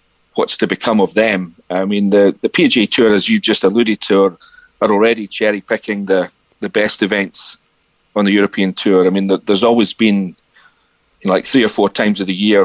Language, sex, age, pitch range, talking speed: English, male, 40-59, 95-105 Hz, 210 wpm